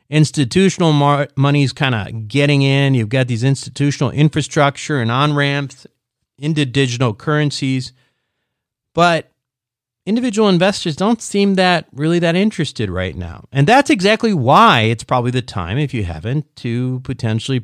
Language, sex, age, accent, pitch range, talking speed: English, male, 40-59, American, 110-145 Hz, 145 wpm